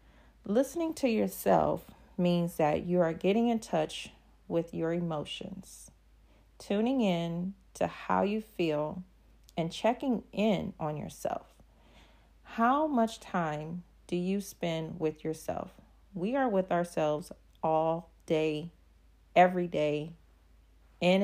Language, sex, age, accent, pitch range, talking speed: English, female, 40-59, American, 160-190 Hz, 115 wpm